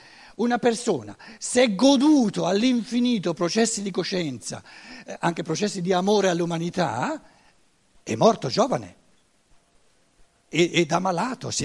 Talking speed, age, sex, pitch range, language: 105 wpm, 60-79, male, 160-205 Hz, Italian